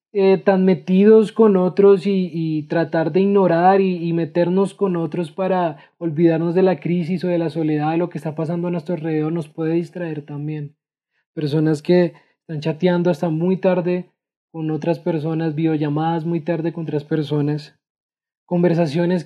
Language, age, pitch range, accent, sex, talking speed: Spanish, 20-39, 155-185 Hz, Colombian, male, 160 wpm